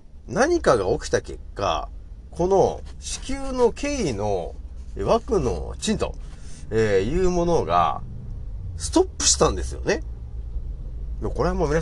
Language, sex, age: Japanese, male, 40-59